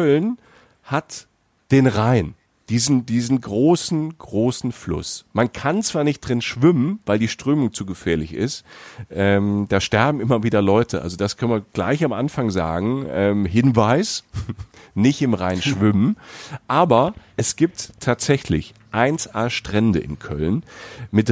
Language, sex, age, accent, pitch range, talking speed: German, male, 40-59, German, 105-135 Hz, 140 wpm